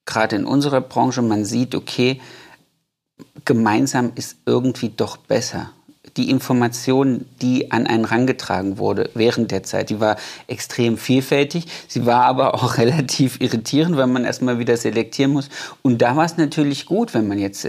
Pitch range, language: 115-140 Hz, German